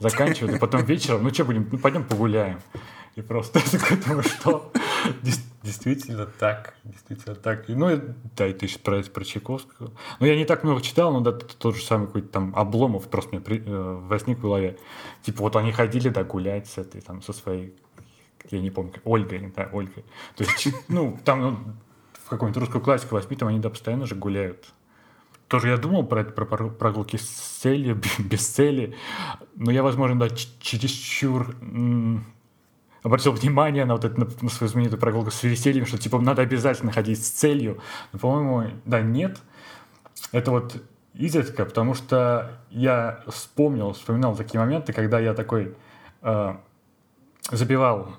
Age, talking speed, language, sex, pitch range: 30-49, 170 wpm, Russian, male, 105-125 Hz